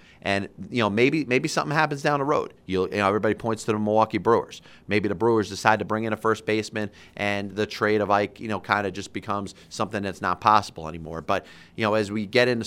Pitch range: 90-110 Hz